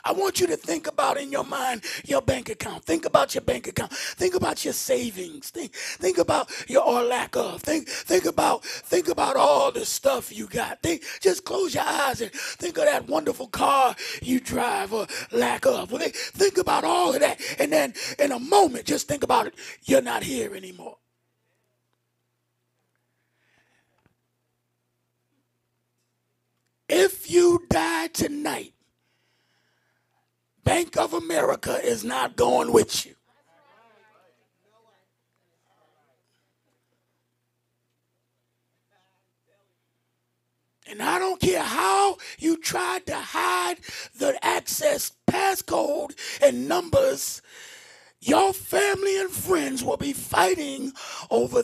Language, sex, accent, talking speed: English, male, American, 120 wpm